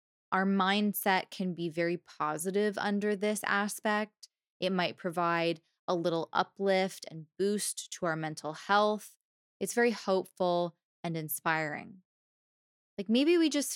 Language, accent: English, American